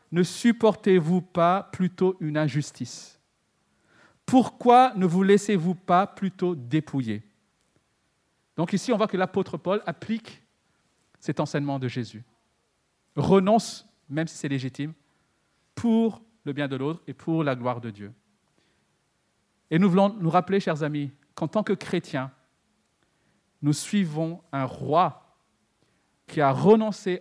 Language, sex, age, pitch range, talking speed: French, male, 50-69, 150-205 Hz, 130 wpm